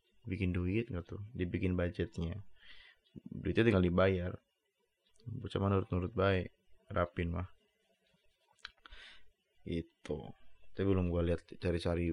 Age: 20-39